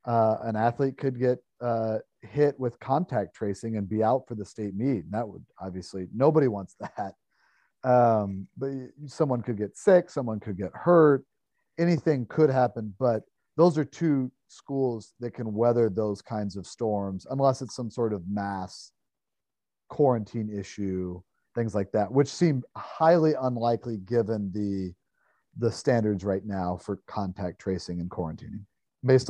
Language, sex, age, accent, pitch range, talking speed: English, male, 40-59, American, 100-130 Hz, 155 wpm